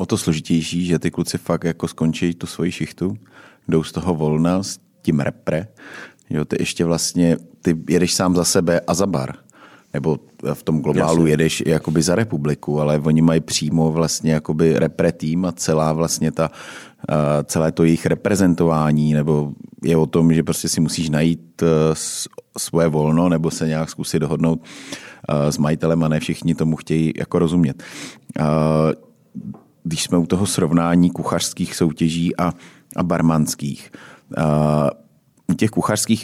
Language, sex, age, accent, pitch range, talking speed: Czech, male, 30-49, native, 80-90 Hz, 155 wpm